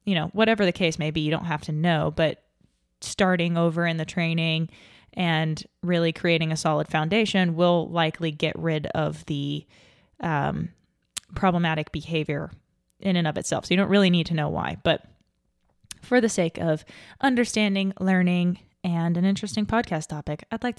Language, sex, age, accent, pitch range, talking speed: English, female, 20-39, American, 165-195 Hz, 170 wpm